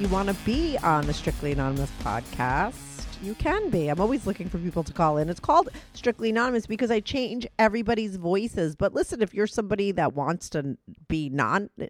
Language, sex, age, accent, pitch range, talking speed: English, female, 40-59, American, 155-225 Hz, 195 wpm